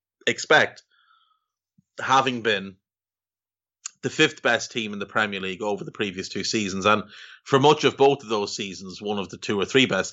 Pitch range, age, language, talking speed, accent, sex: 100-140 Hz, 30-49, English, 185 wpm, Irish, male